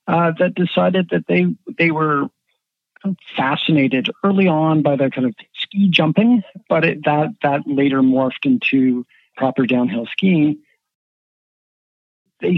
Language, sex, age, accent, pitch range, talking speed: English, male, 50-69, American, 140-195 Hz, 130 wpm